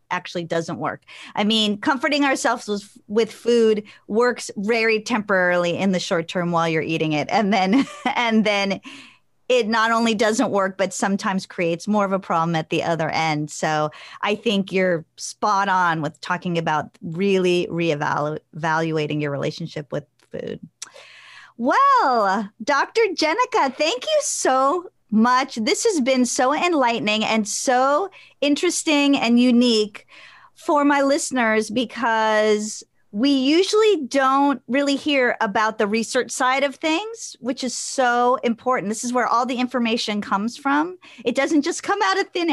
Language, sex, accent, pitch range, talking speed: English, female, American, 200-270 Hz, 150 wpm